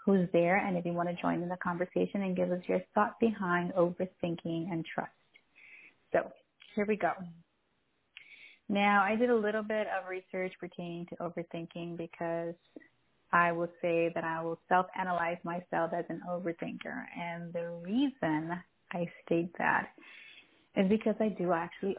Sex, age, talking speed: female, 30-49, 160 wpm